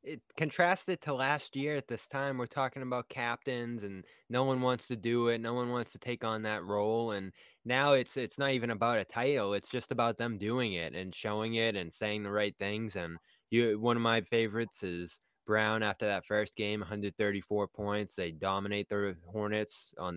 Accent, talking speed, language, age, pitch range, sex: American, 205 wpm, English, 10-29, 95-120 Hz, male